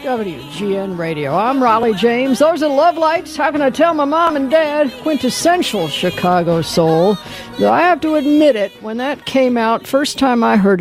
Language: English